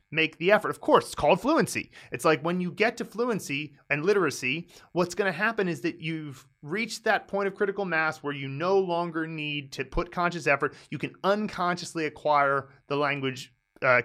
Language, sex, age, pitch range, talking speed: English, male, 30-49, 125-170 Hz, 195 wpm